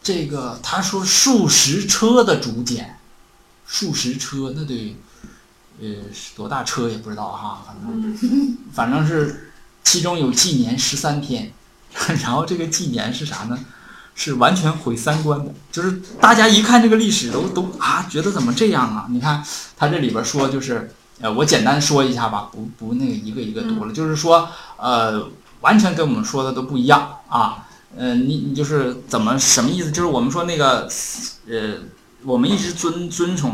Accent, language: native, Chinese